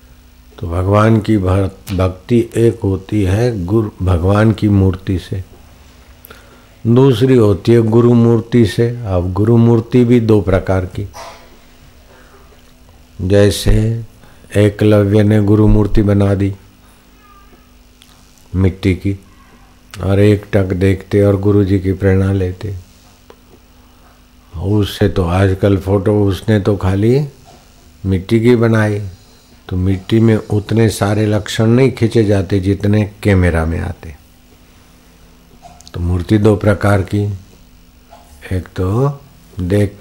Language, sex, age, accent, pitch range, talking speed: Hindi, male, 60-79, native, 90-110 Hz, 115 wpm